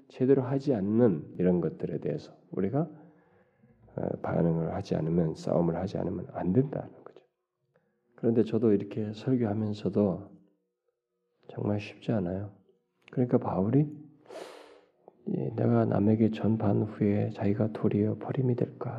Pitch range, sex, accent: 95-125 Hz, male, native